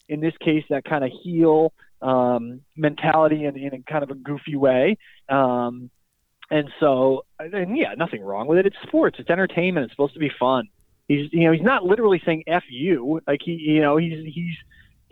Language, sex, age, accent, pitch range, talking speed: English, male, 20-39, American, 135-170 Hz, 190 wpm